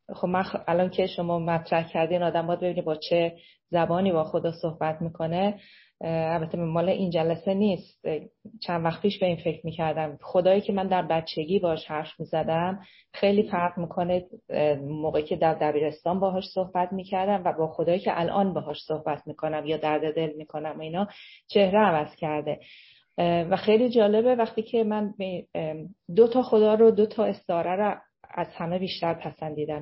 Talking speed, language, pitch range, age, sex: 160 wpm, Persian, 155-200 Hz, 30-49, female